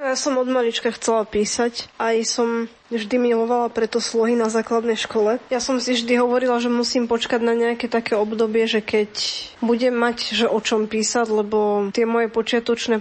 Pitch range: 220-240 Hz